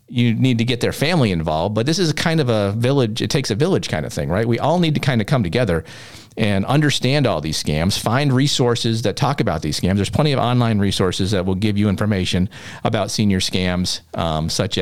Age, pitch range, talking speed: 40-59, 100-125 Hz, 230 wpm